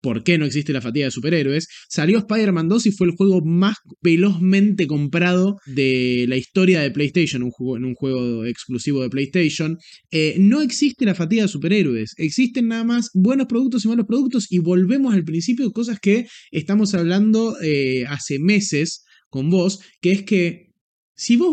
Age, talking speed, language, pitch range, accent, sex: 20-39, 175 wpm, Spanish, 145-200 Hz, Argentinian, male